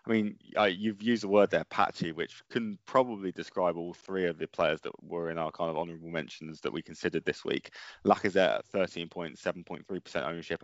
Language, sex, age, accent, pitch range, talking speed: English, male, 20-39, British, 85-110 Hz, 220 wpm